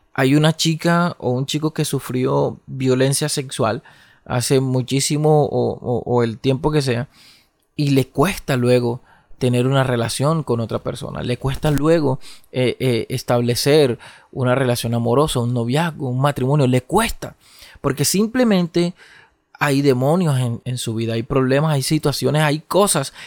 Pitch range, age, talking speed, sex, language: 125-150 Hz, 30-49, 150 wpm, male, Spanish